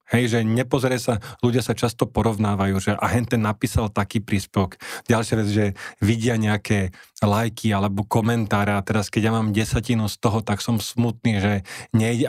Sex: male